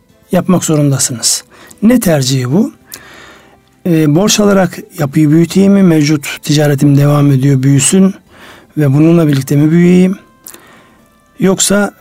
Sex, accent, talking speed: male, native, 110 wpm